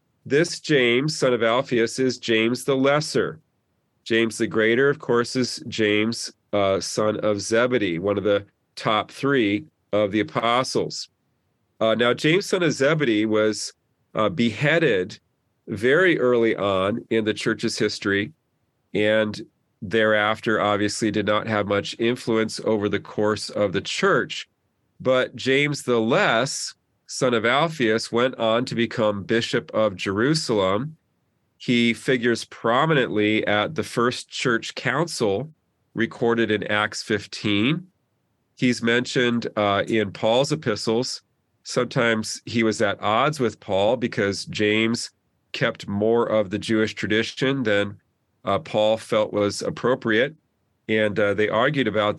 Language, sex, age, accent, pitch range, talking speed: English, male, 40-59, American, 105-120 Hz, 135 wpm